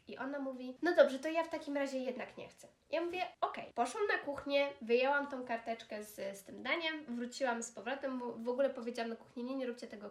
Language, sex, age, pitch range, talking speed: Polish, female, 20-39, 235-305 Hz, 235 wpm